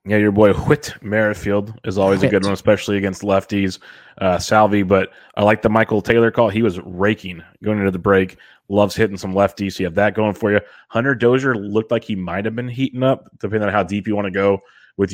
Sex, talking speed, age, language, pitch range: male, 235 wpm, 20-39, English, 95-110 Hz